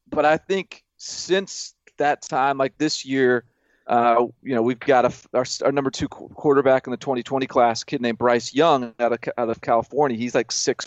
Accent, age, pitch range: American, 30-49, 120-140 Hz